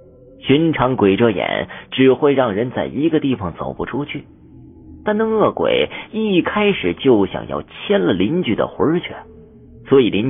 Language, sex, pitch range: Chinese, male, 110-170 Hz